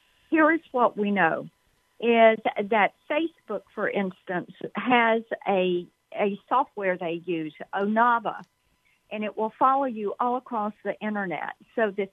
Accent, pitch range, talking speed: American, 195-245 Hz, 140 wpm